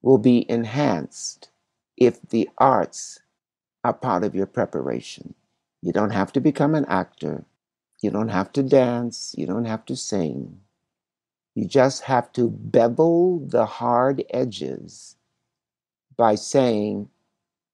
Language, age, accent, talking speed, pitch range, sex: English, 60-79, American, 130 wpm, 110-145 Hz, male